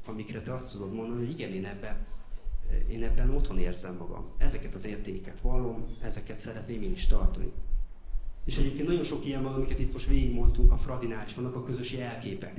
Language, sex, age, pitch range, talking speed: Hungarian, male, 30-49, 100-130 Hz, 185 wpm